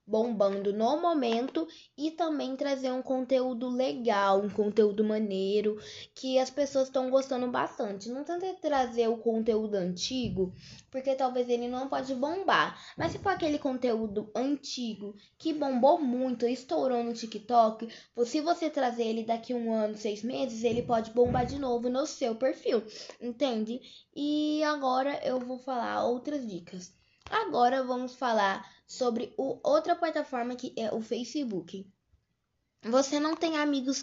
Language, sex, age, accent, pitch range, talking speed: Portuguese, female, 10-29, Brazilian, 220-270 Hz, 150 wpm